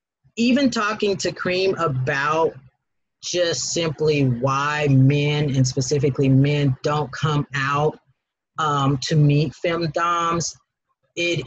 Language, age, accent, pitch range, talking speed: English, 40-59, American, 135-155 Hz, 105 wpm